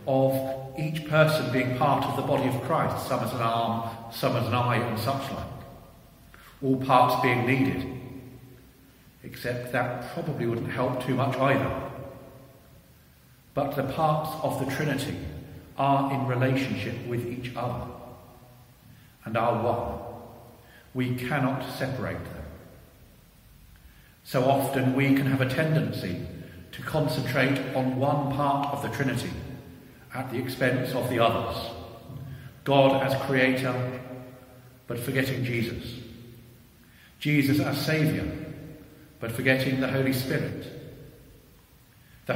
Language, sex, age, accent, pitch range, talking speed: English, male, 50-69, British, 120-135 Hz, 125 wpm